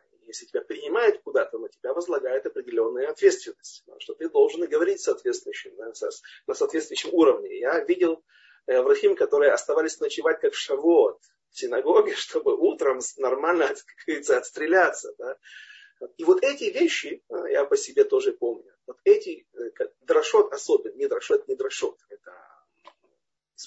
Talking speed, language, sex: 135 wpm, Russian, male